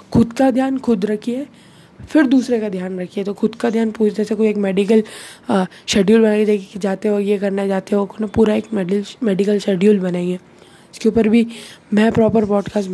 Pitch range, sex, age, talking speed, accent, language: 195-220 Hz, female, 20-39, 200 wpm, native, Hindi